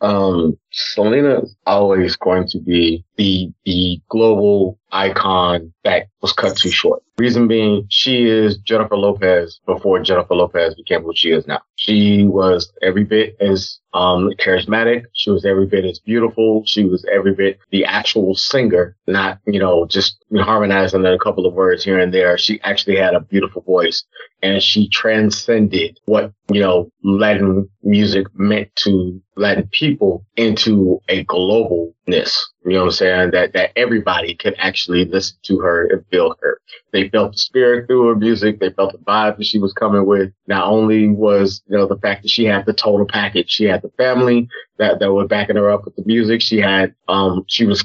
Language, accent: English, American